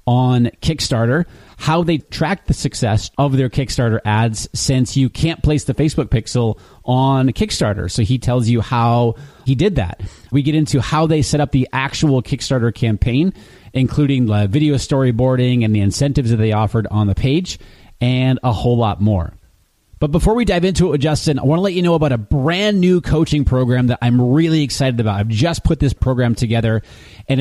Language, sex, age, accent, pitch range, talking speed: English, male, 30-49, American, 120-150 Hz, 195 wpm